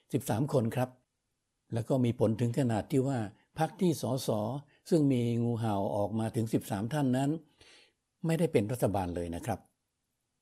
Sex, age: male, 60-79